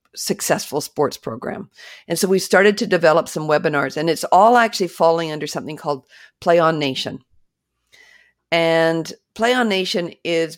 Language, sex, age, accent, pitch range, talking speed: English, female, 50-69, American, 155-190 Hz, 155 wpm